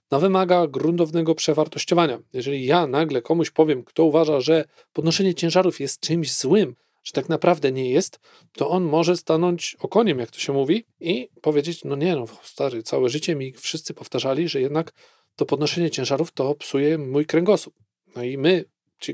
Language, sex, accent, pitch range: Polish, male, native, 140-175 Hz